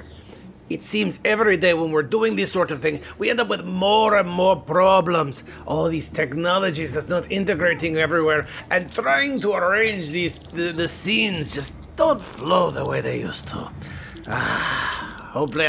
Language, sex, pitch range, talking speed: English, male, 150-195 Hz, 170 wpm